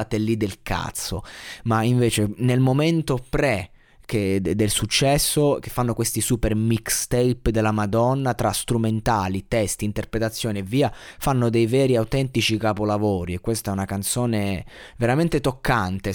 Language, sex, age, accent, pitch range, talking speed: Italian, male, 20-39, native, 105-130 Hz, 135 wpm